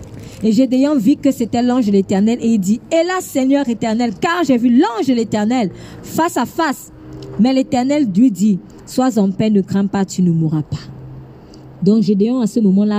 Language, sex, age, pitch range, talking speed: French, female, 40-59, 160-225 Hz, 195 wpm